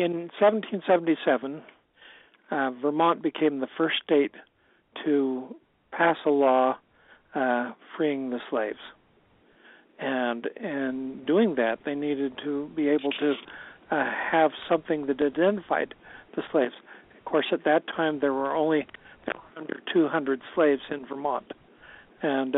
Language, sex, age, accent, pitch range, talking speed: English, male, 60-79, American, 135-165 Hz, 120 wpm